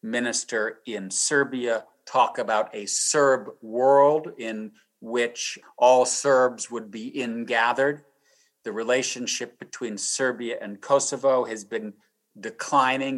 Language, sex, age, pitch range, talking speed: English, male, 50-69, 115-140 Hz, 115 wpm